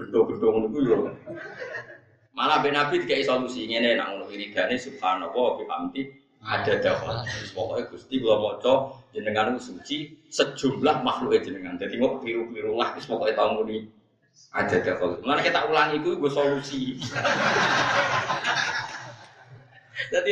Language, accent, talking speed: Indonesian, native, 105 wpm